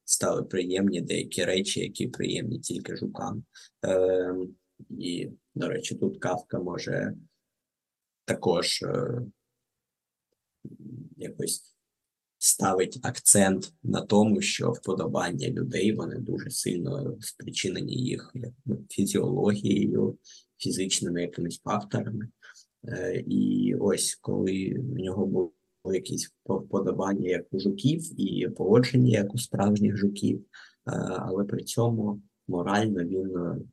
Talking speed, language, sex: 100 wpm, Ukrainian, male